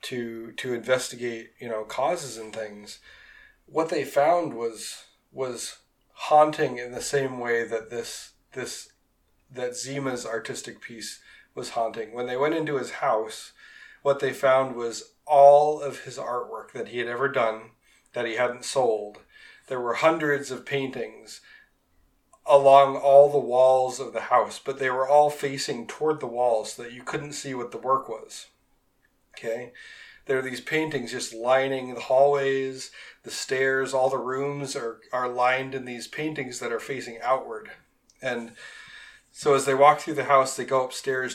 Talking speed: 165 wpm